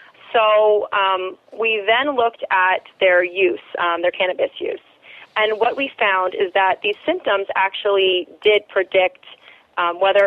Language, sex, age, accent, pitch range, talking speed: English, female, 30-49, American, 190-255 Hz, 145 wpm